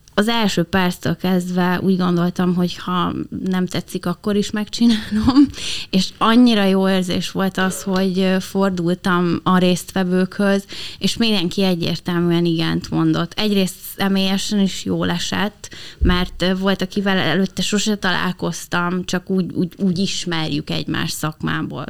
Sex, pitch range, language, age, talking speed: female, 180-205 Hz, Hungarian, 20-39, 125 wpm